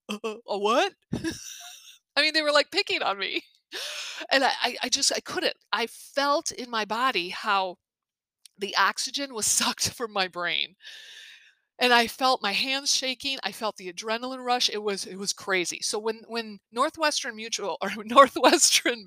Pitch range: 200-275 Hz